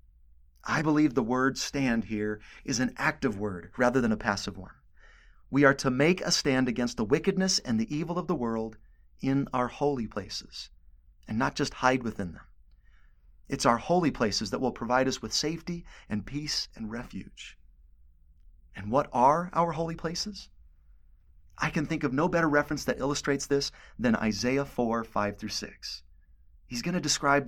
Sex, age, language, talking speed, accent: male, 30-49, English, 170 wpm, American